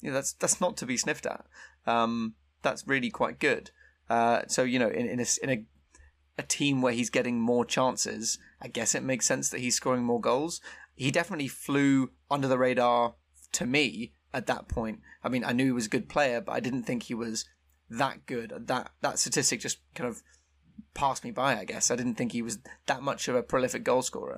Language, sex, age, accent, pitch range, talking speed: English, male, 20-39, British, 115-135 Hz, 225 wpm